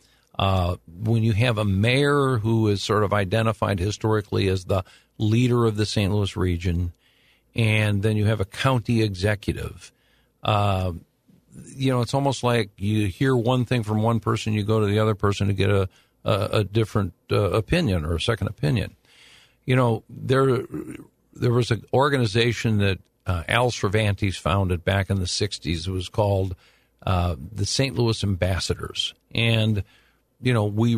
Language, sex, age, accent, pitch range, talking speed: English, male, 50-69, American, 100-120 Hz, 165 wpm